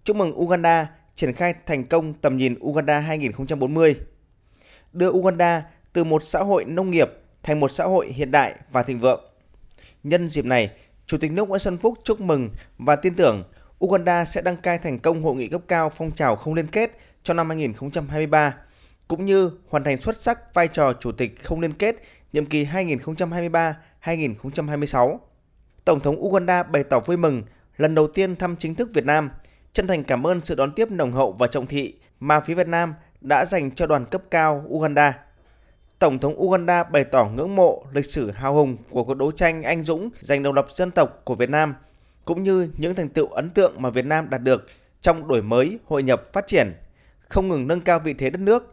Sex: male